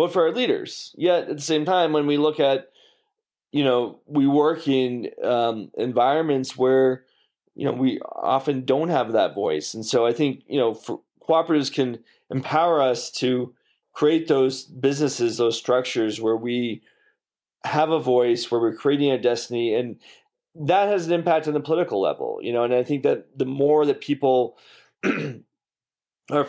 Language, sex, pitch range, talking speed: English, male, 120-150 Hz, 170 wpm